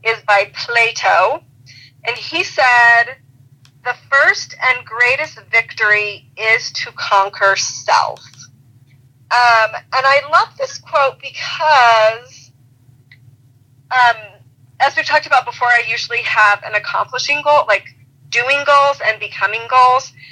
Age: 30-49